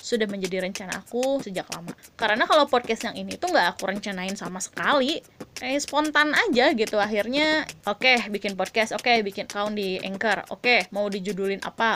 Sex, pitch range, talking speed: female, 195-255 Hz, 180 wpm